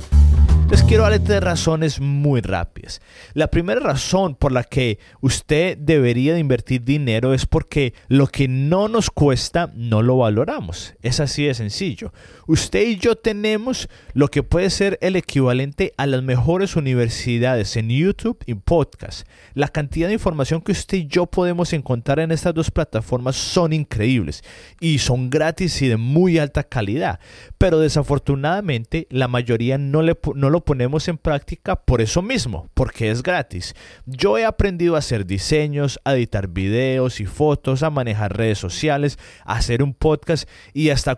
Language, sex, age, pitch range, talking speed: Spanish, male, 30-49, 115-160 Hz, 165 wpm